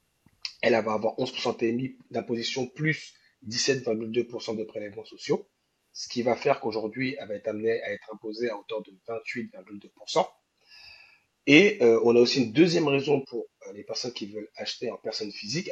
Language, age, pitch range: French, 30-49, 110-145 Hz